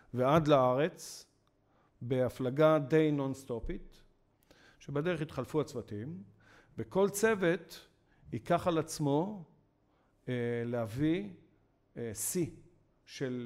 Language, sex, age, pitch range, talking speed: Hebrew, male, 50-69, 115-155 Hz, 80 wpm